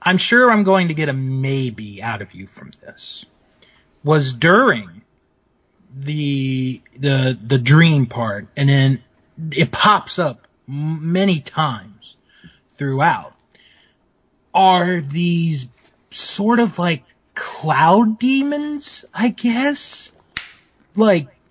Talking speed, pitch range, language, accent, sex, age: 105 wpm, 140-185 Hz, English, American, male, 30-49